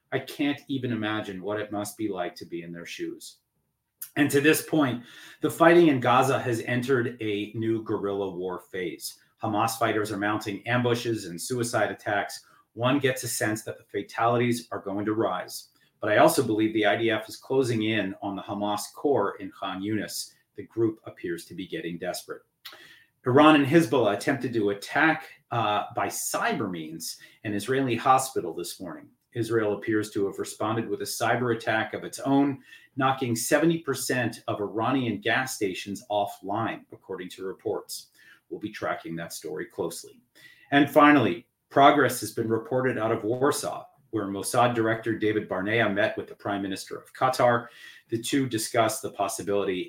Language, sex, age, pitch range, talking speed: English, male, 30-49, 105-135 Hz, 170 wpm